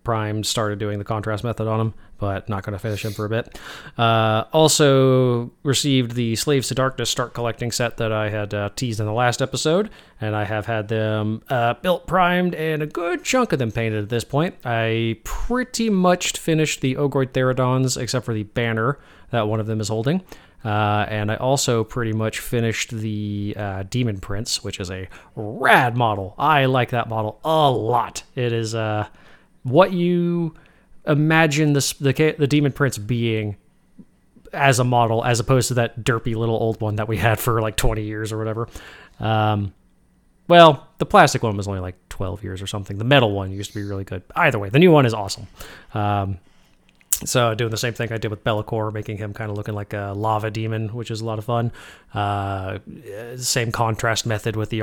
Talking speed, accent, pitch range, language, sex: 200 wpm, American, 105-130 Hz, English, male